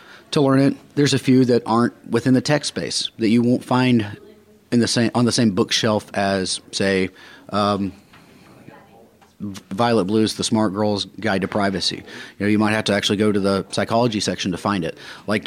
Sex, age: male, 30-49